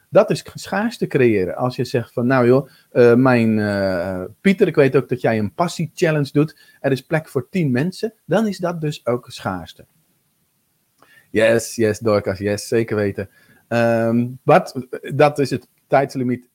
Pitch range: 115-155 Hz